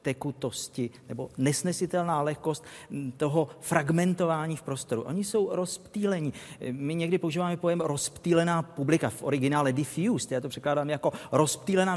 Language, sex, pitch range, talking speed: Czech, male, 135-175 Hz, 125 wpm